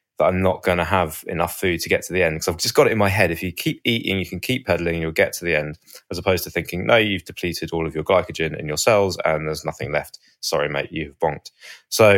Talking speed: 285 wpm